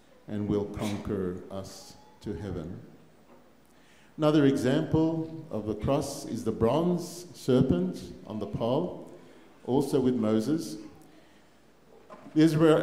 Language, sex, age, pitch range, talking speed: English, male, 50-69, 100-125 Hz, 105 wpm